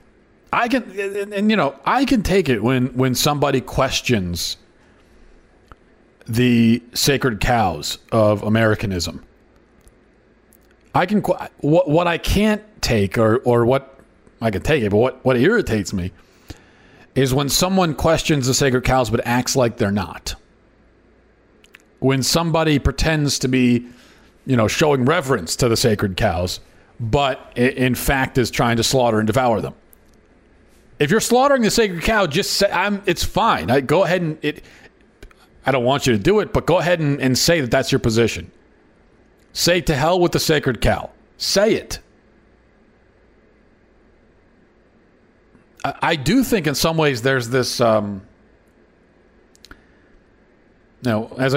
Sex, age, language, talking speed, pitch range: male, 40-59, English, 150 wpm, 115-165 Hz